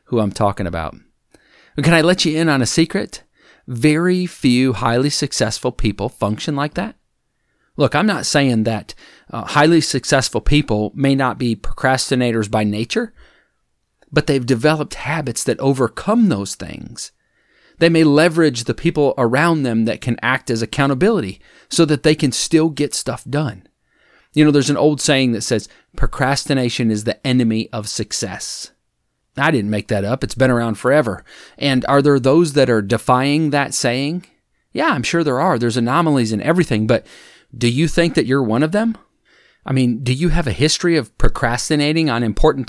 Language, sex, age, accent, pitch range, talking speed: English, male, 40-59, American, 115-155 Hz, 175 wpm